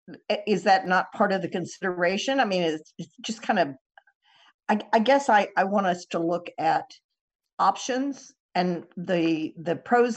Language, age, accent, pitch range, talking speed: English, 50-69, American, 170-235 Hz, 165 wpm